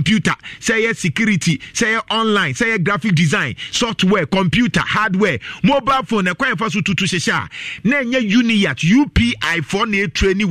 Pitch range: 160-220 Hz